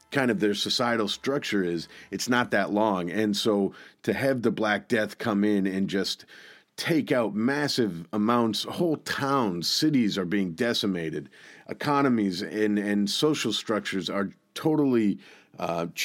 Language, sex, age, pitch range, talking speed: English, male, 40-59, 100-125 Hz, 145 wpm